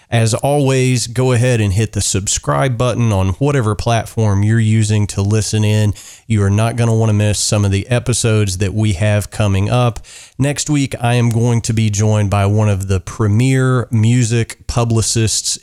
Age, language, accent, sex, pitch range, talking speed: 30-49, English, American, male, 100-120 Hz, 190 wpm